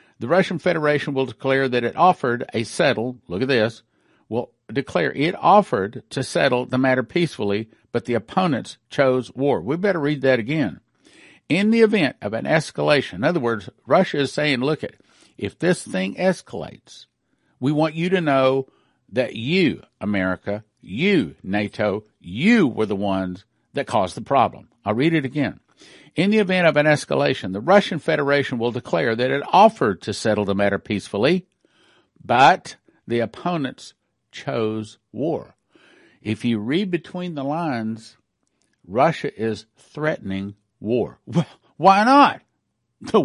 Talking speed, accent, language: 150 wpm, American, English